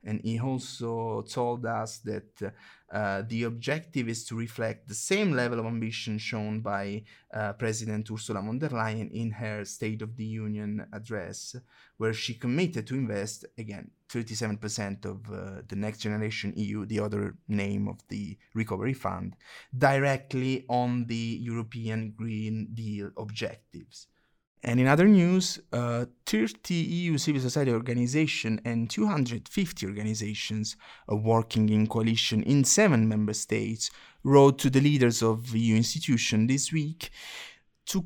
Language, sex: English, male